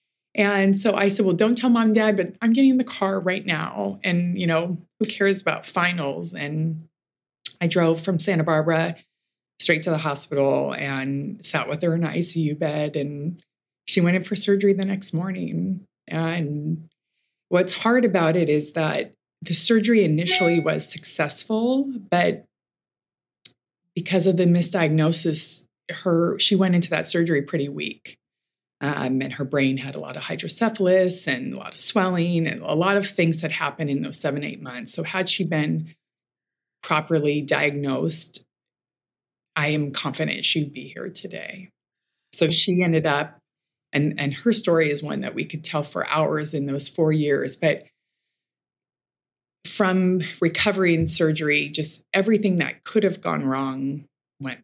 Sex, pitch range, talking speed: female, 145-185 Hz, 165 wpm